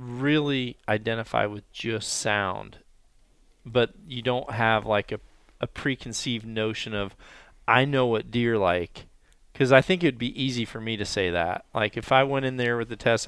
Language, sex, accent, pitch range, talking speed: English, male, American, 105-125 Hz, 180 wpm